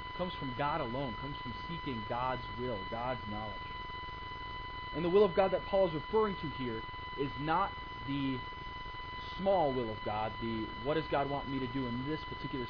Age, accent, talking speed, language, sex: 30-49, American, 190 wpm, English, male